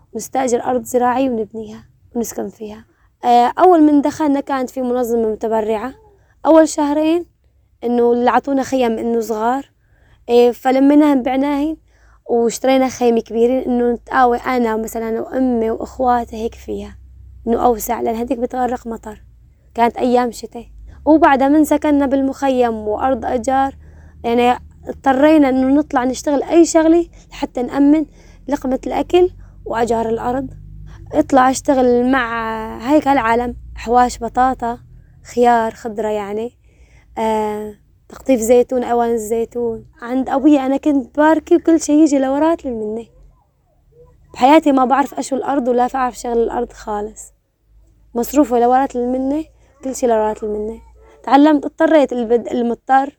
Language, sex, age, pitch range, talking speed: Arabic, female, 20-39, 235-275 Hz, 120 wpm